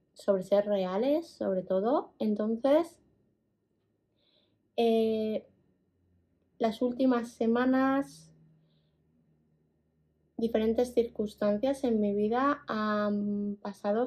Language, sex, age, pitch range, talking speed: Spanish, female, 20-39, 210-255 Hz, 75 wpm